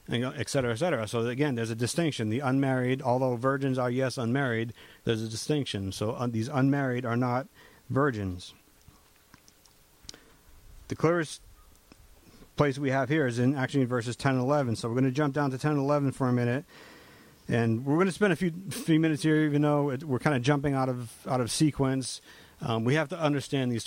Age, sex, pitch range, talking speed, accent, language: 50-69, male, 120-145 Hz, 200 wpm, American, English